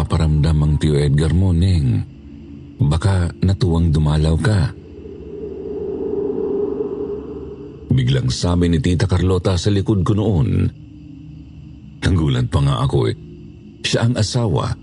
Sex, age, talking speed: male, 50-69, 105 wpm